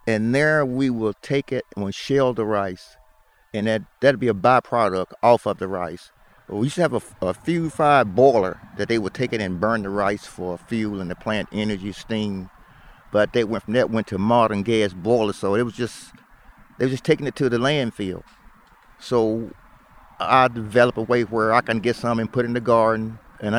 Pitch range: 105-130 Hz